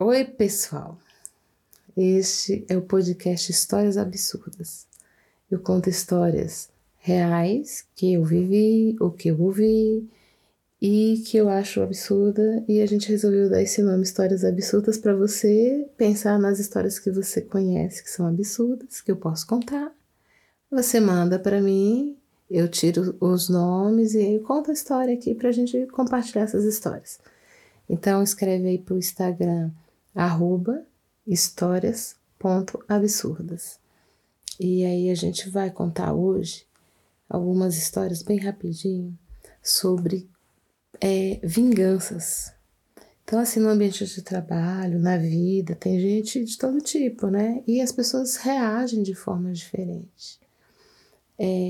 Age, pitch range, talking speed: 30-49, 180-215 Hz, 130 wpm